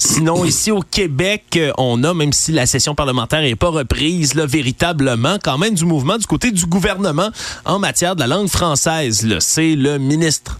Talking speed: 195 wpm